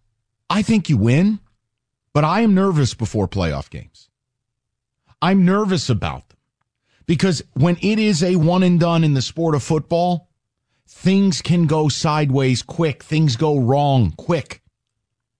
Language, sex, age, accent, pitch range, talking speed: English, male, 40-59, American, 115-165 Hz, 135 wpm